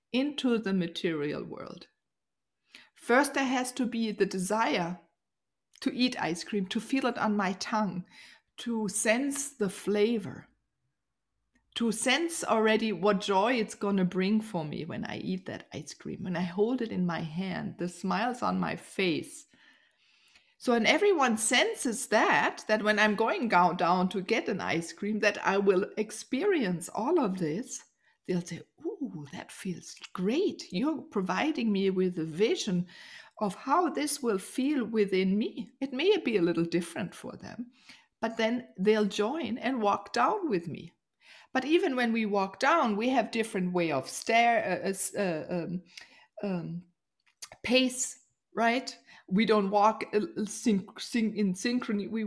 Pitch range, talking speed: 190-245 Hz, 155 wpm